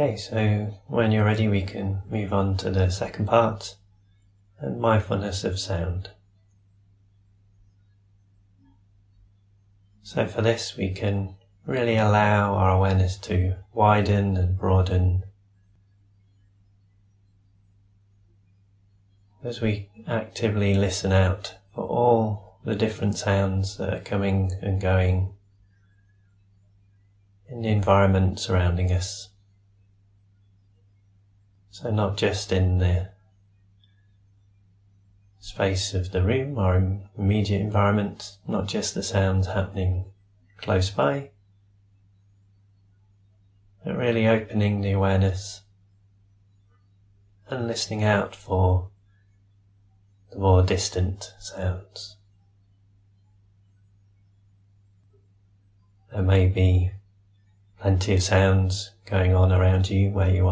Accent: British